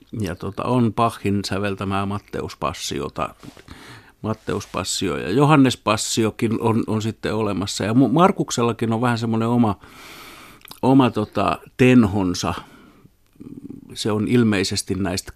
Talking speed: 105 wpm